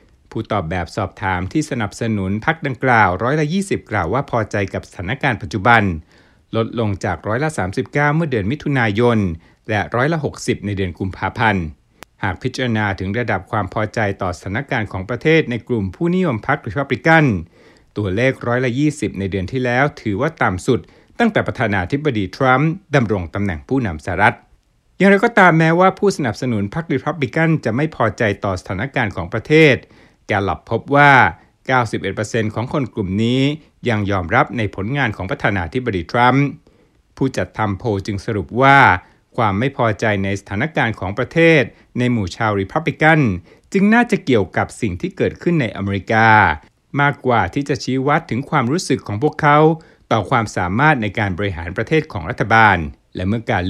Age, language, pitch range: 60-79, Thai, 100-140 Hz